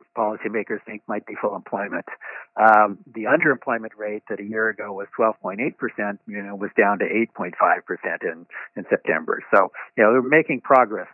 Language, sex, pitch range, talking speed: English, male, 105-120 Hz, 165 wpm